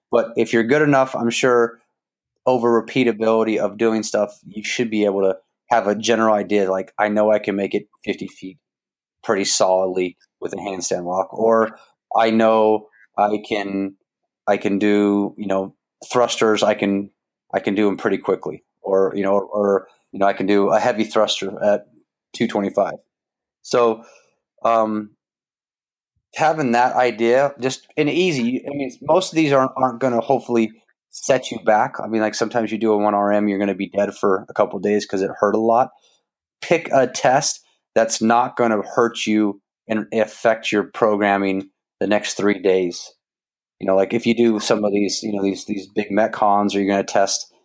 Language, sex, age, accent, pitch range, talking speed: English, male, 30-49, American, 100-115 Hz, 190 wpm